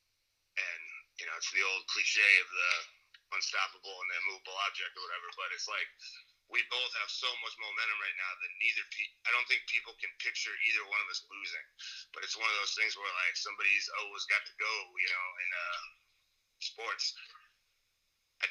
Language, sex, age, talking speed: English, male, 30-49, 190 wpm